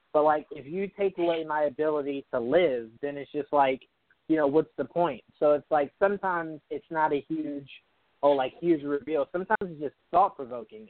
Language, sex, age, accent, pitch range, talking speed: English, male, 20-39, American, 145-180 Hz, 195 wpm